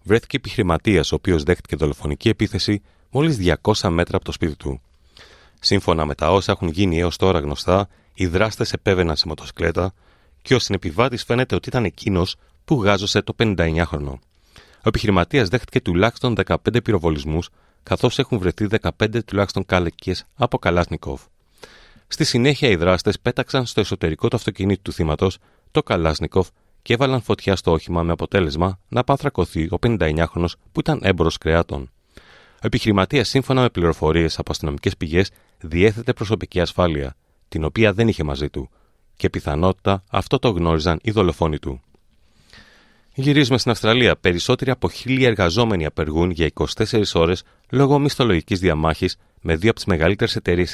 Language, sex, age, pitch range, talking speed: Greek, male, 30-49, 85-110 Hz, 150 wpm